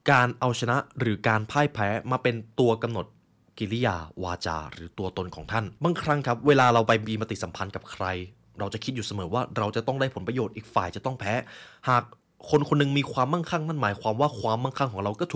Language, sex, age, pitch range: Thai, male, 20-39, 100-145 Hz